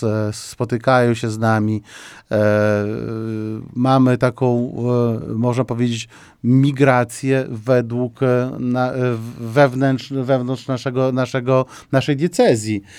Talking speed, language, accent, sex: 80 wpm, Polish, native, male